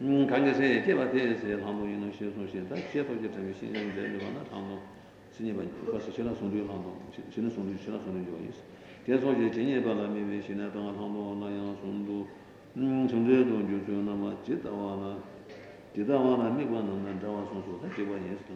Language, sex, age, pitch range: Italian, male, 60-79, 100-115 Hz